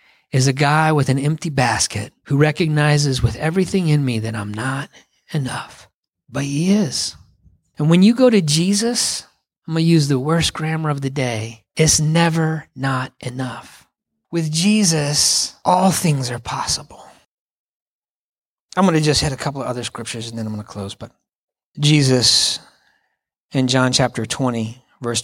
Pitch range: 125-160 Hz